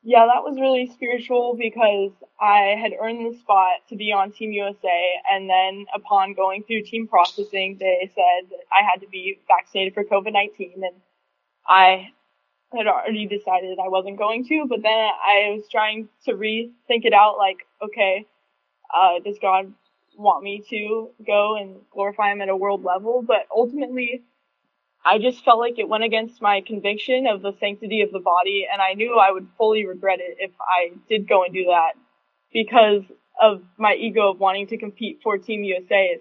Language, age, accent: English, 10-29, American